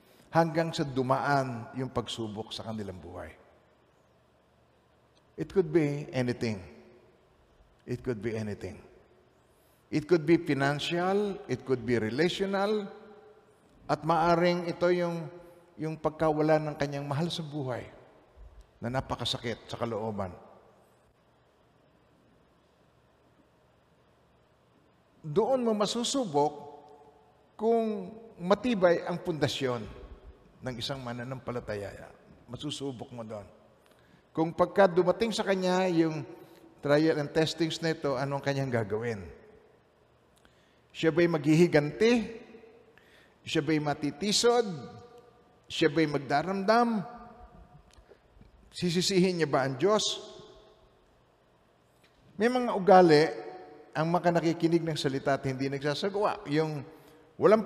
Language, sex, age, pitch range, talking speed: Filipino, male, 50-69, 130-180 Hz, 95 wpm